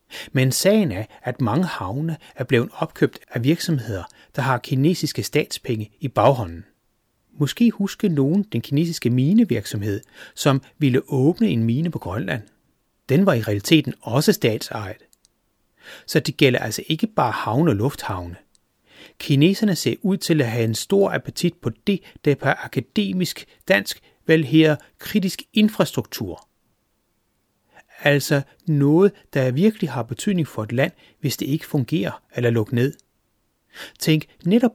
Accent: native